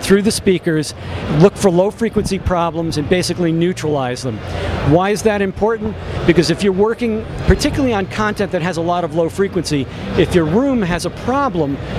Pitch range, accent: 145-195 Hz, American